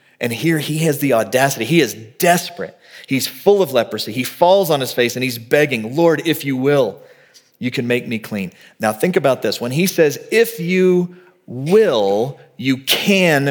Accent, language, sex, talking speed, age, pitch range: American, English, male, 185 wpm, 30-49, 105-150 Hz